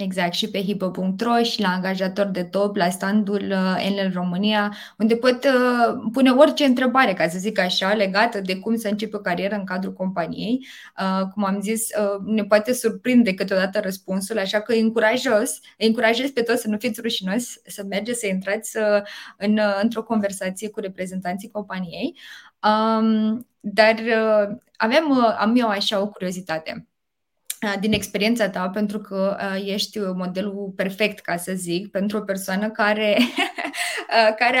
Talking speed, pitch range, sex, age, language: 155 wpm, 195-230 Hz, female, 20-39, Romanian